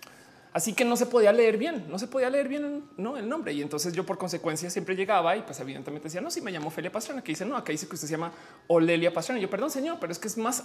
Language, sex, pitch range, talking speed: Spanish, male, 160-225 Hz, 300 wpm